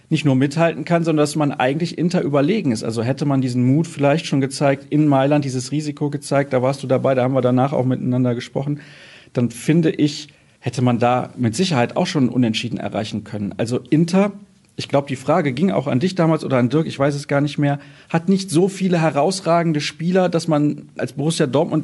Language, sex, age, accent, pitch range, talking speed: German, male, 40-59, German, 125-155 Hz, 220 wpm